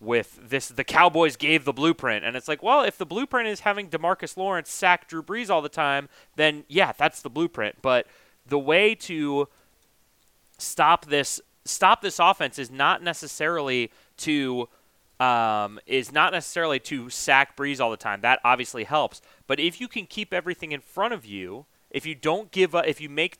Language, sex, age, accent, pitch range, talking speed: English, male, 30-49, American, 140-180 Hz, 185 wpm